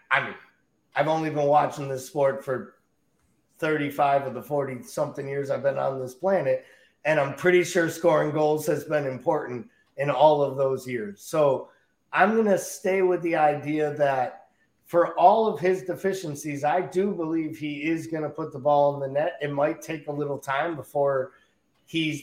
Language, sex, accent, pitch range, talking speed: English, male, American, 140-165 Hz, 185 wpm